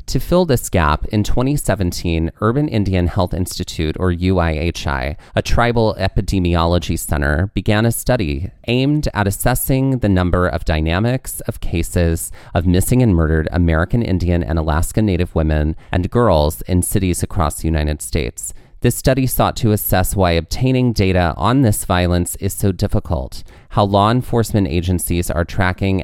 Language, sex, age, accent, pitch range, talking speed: English, male, 30-49, American, 85-105 Hz, 150 wpm